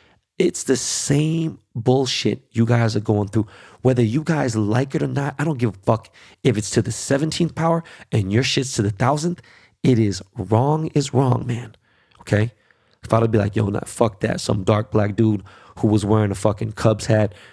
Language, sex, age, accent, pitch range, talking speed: English, male, 30-49, American, 100-120 Hz, 200 wpm